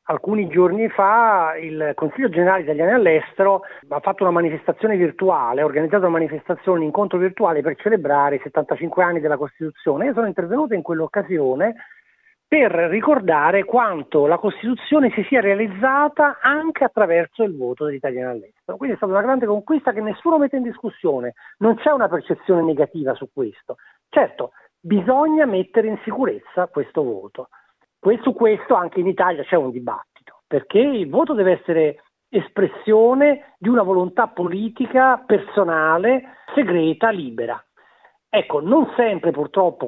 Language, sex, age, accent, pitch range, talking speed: Italian, male, 40-59, native, 160-235 Hz, 145 wpm